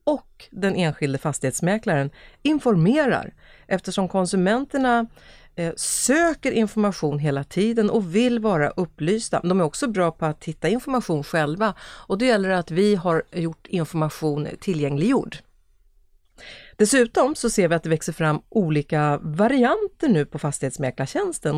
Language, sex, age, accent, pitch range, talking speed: Swedish, female, 40-59, native, 160-230 Hz, 135 wpm